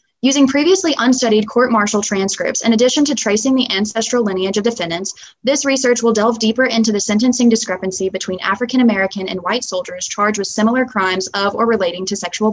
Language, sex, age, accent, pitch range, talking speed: English, female, 20-39, American, 195-250 Hz, 175 wpm